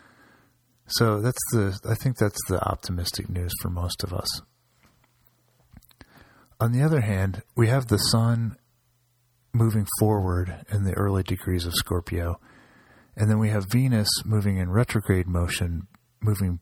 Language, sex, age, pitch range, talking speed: English, male, 40-59, 95-115 Hz, 140 wpm